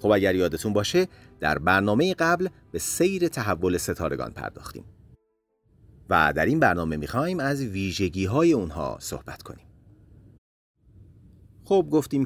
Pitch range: 90-125 Hz